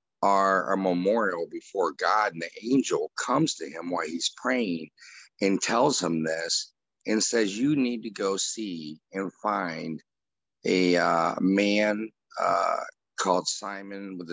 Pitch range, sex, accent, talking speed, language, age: 90-115 Hz, male, American, 140 wpm, English, 50-69